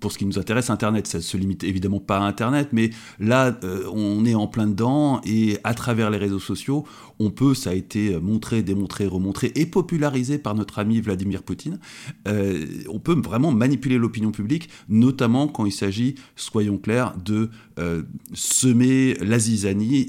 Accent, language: French, French